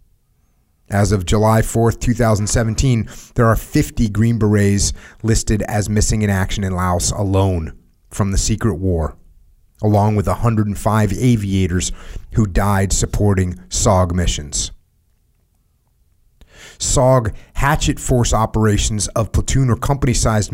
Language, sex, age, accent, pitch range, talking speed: English, male, 30-49, American, 100-125 Hz, 115 wpm